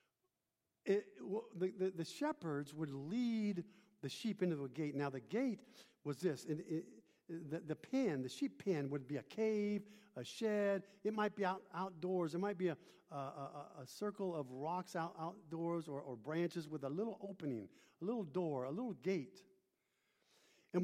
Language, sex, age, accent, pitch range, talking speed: English, male, 50-69, American, 165-240 Hz, 180 wpm